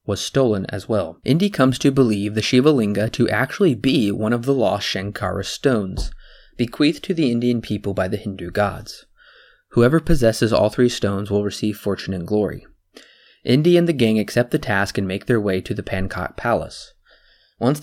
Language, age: English, 20-39